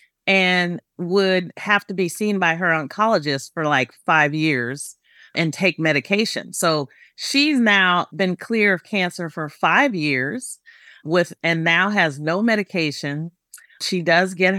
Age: 40-59